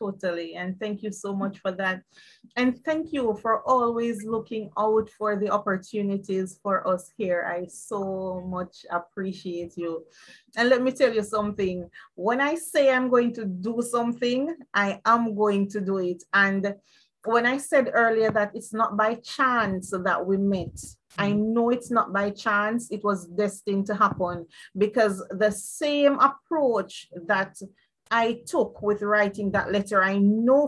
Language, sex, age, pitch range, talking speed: English, female, 30-49, 195-235 Hz, 160 wpm